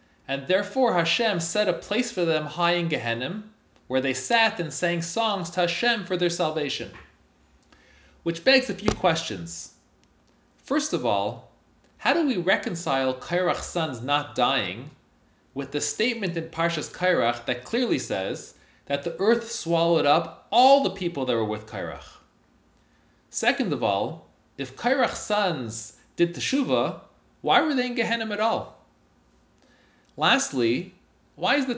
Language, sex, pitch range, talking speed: English, male, 140-210 Hz, 145 wpm